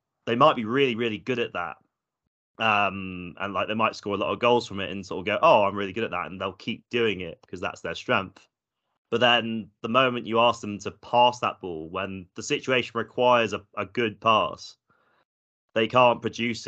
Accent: British